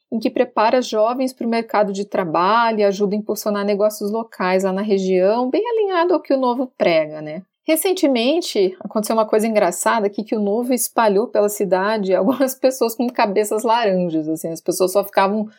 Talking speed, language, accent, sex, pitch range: 185 wpm, Portuguese, Brazilian, female, 185-225 Hz